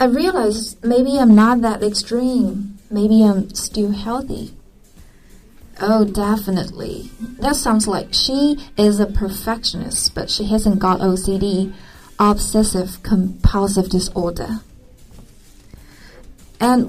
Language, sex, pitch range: Chinese, female, 190-225 Hz